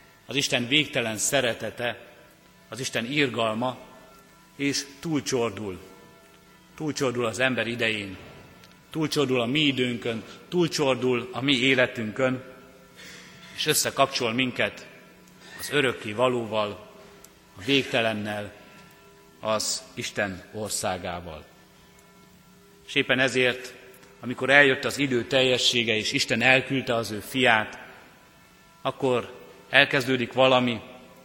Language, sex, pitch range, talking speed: Hungarian, male, 110-130 Hz, 95 wpm